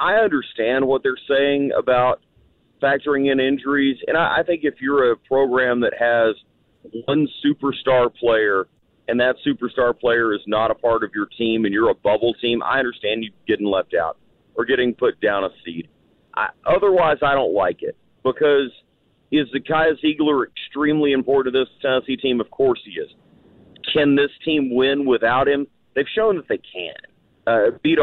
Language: English